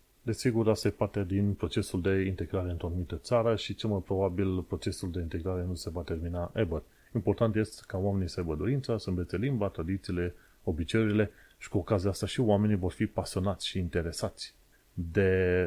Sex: male